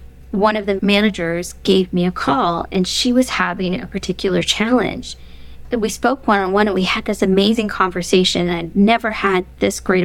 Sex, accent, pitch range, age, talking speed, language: female, American, 180-210 Hz, 20-39, 185 wpm, English